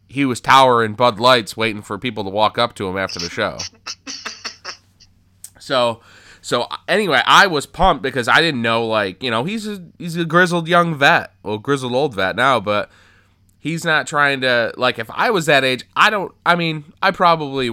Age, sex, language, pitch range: 20-39, male, English, 100-125 Hz